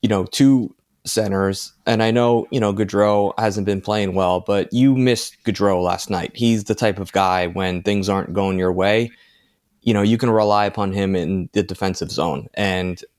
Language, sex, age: English, male, 20-39